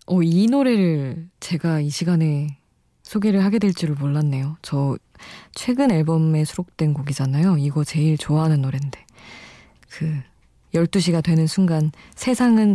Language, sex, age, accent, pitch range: Korean, female, 20-39, native, 150-185 Hz